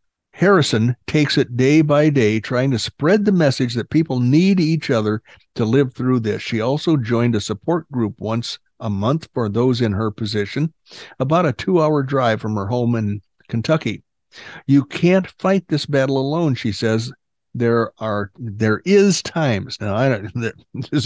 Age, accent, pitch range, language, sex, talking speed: 60-79, American, 110-145 Hz, English, male, 170 wpm